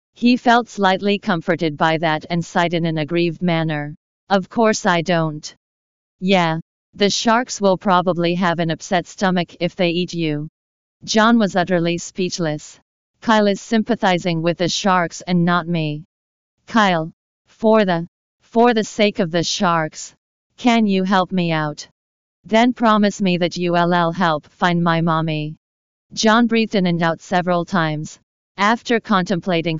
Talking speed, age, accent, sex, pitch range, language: 150 wpm, 40-59, American, female, 165-205 Hz, English